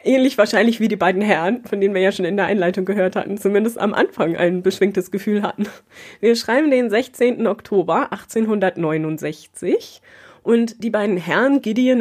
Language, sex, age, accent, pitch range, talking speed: German, female, 20-39, German, 185-235 Hz, 170 wpm